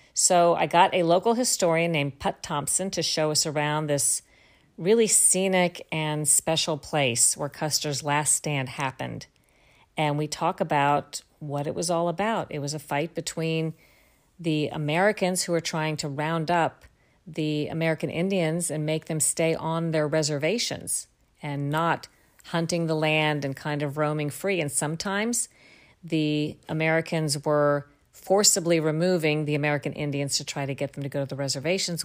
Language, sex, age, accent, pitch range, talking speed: English, female, 50-69, American, 150-170 Hz, 160 wpm